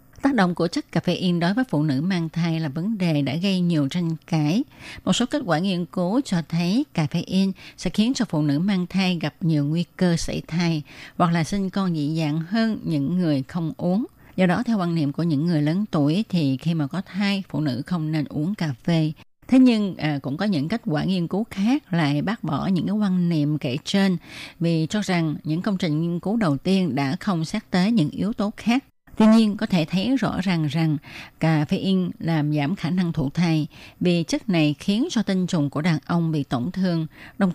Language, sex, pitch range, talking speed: Vietnamese, female, 155-195 Hz, 235 wpm